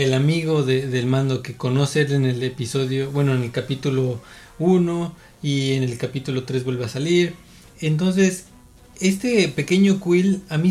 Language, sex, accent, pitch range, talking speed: Spanish, male, Mexican, 135-170 Hz, 145 wpm